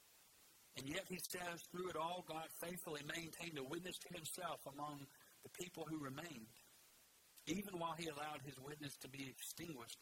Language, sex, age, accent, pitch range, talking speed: English, male, 60-79, American, 135-170 Hz, 170 wpm